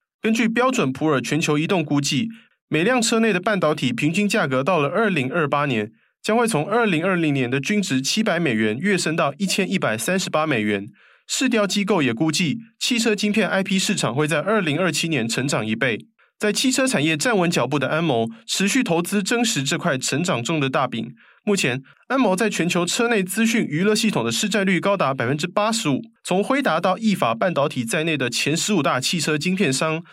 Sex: male